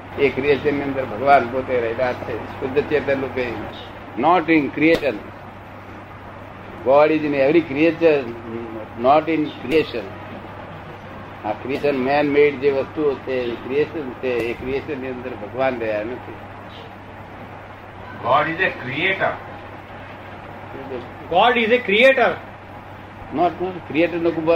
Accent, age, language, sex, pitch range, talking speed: native, 60-79, Gujarati, male, 105-155 Hz, 80 wpm